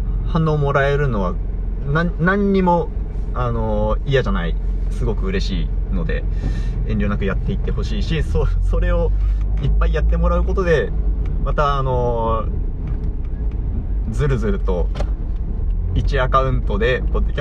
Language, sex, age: Japanese, male, 30-49